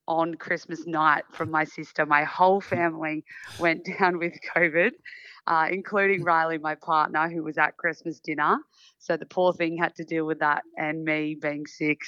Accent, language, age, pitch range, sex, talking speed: Australian, English, 20-39, 155-175 Hz, female, 180 wpm